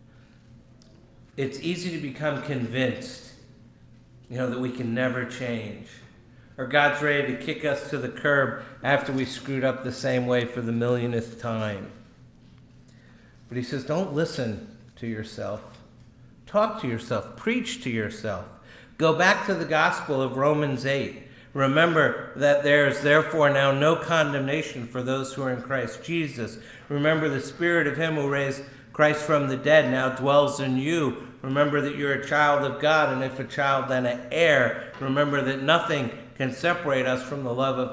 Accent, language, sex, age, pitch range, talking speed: American, English, male, 60-79, 125-145 Hz, 170 wpm